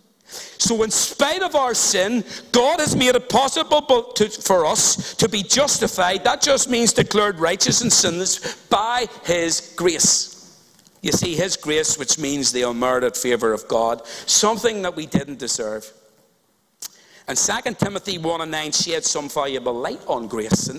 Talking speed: 160 wpm